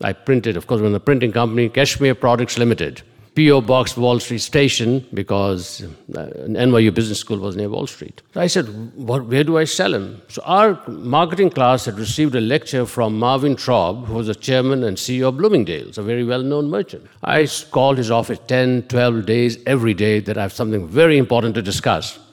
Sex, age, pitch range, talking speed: male, 60-79, 115-150 Hz, 190 wpm